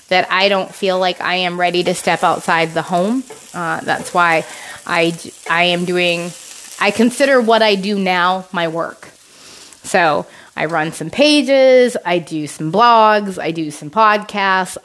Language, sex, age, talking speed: English, female, 20-39, 165 wpm